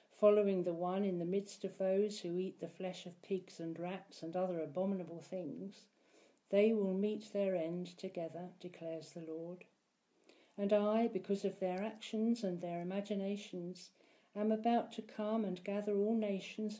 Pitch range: 175-210 Hz